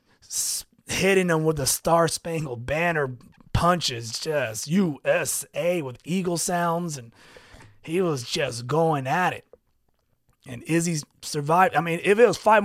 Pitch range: 135-175 Hz